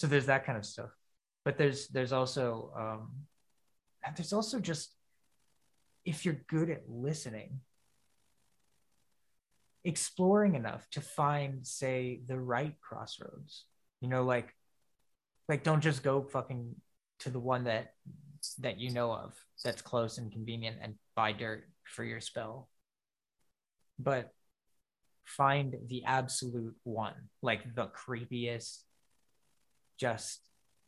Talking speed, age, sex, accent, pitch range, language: 120 wpm, 20-39, male, American, 115-145 Hz, English